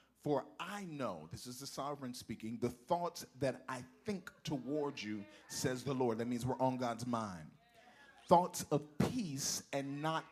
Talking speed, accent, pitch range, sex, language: 170 wpm, American, 130-165 Hz, male, English